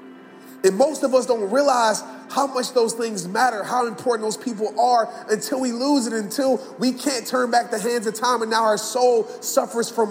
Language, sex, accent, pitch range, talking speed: English, male, American, 225-260 Hz, 210 wpm